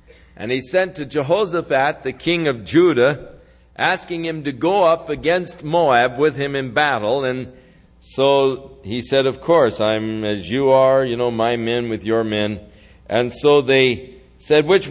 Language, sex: English, male